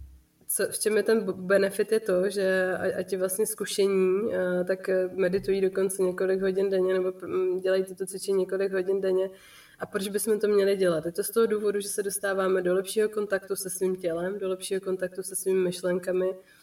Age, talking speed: 20-39, 190 wpm